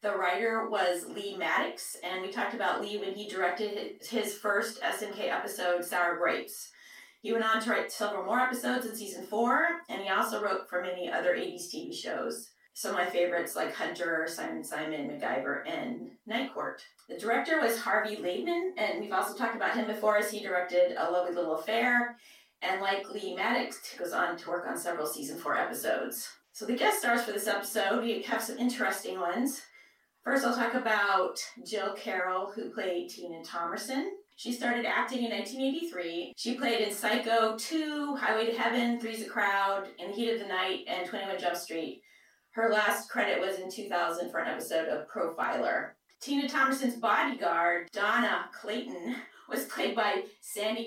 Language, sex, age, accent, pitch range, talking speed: English, female, 30-49, American, 185-240 Hz, 180 wpm